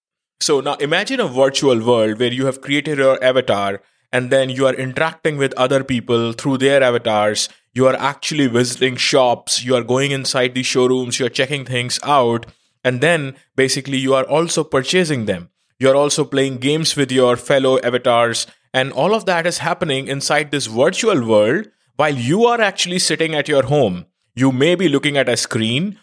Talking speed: 185 wpm